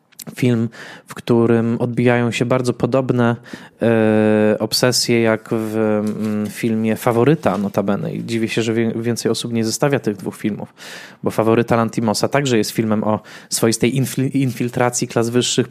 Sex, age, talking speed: male, 20-39, 130 wpm